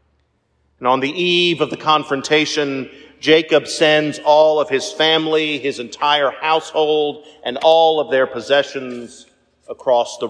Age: 40-59